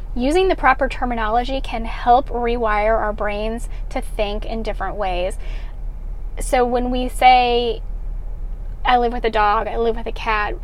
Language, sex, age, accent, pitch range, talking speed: English, female, 10-29, American, 225-270 Hz, 160 wpm